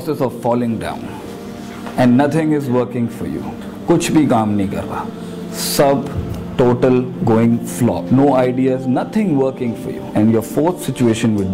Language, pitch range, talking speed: Urdu, 115-155 Hz, 135 wpm